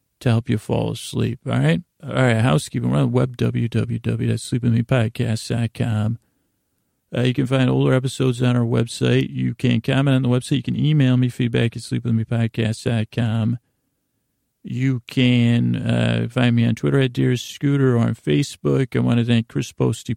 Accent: American